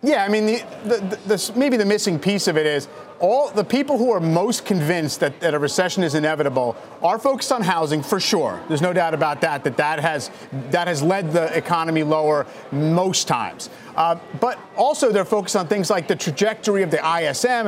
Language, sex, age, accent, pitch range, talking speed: English, male, 40-59, American, 160-215 Hz, 190 wpm